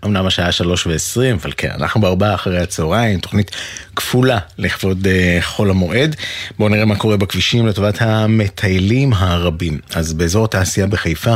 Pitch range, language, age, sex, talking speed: 90-110 Hz, Hebrew, 30-49, male, 145 wpm